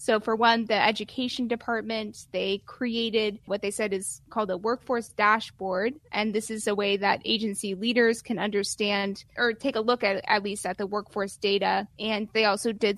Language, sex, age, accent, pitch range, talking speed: English, female, 20-39, American, 200-230 Hz, 190 wpm